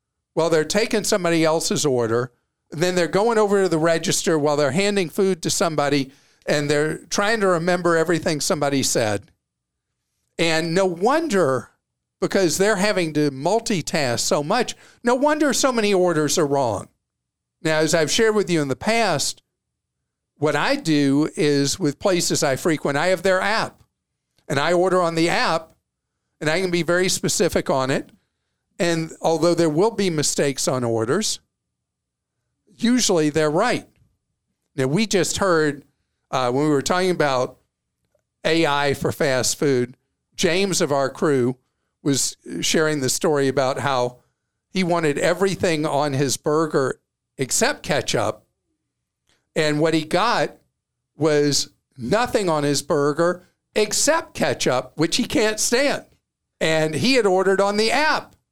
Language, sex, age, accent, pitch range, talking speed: English, male, 50-69, American, 145-195 Hz, 150 wpm